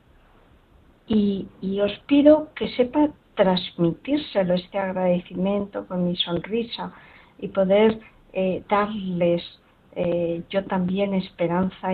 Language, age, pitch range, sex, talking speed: Spanish, 50-69, 170-215 Hz, female, 100 wpm